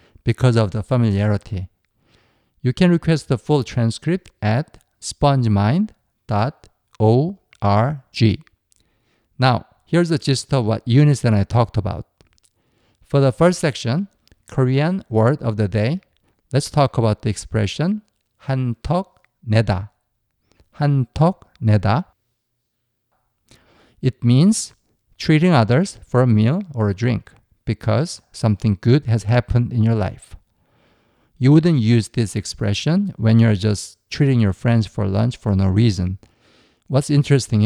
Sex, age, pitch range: male, 50-69, 105-135 Hz